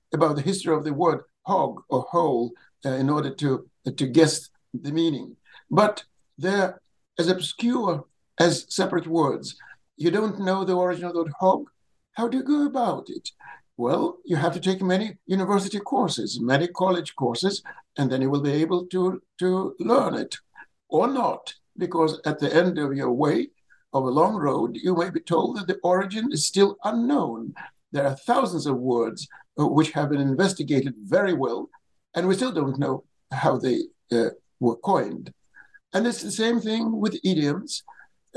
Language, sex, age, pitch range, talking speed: English, male, 60-79, 155-195 Hz, 175 wpm